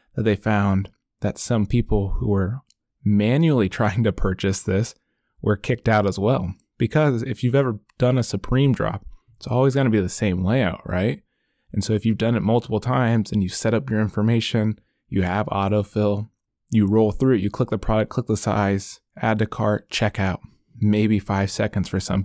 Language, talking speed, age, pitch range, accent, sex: English, 195 wpm, 20-39, 100-120 Hz, American, male